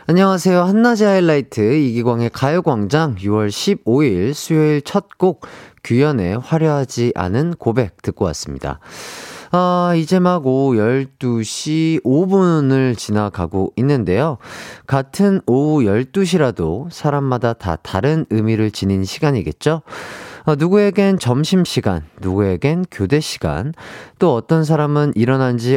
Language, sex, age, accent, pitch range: Korean, male, 30-49, native, 105-165 Hz